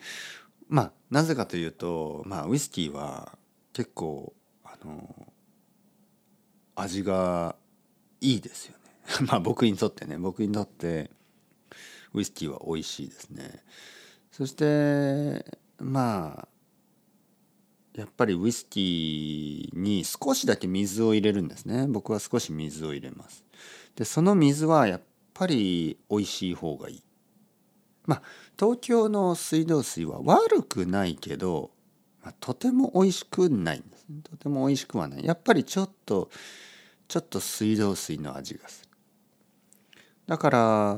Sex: male